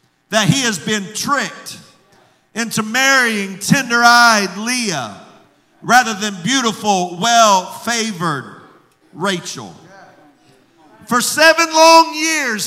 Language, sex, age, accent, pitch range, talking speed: English, male, 50-69, American, 190-270 Hz, 85 wpm